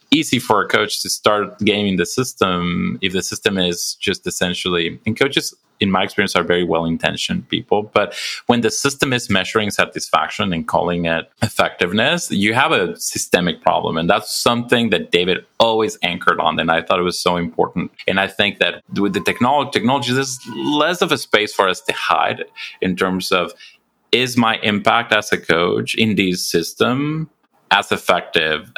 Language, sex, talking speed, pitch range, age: English, male, 175 wpm, 85-110 Hz, 30-49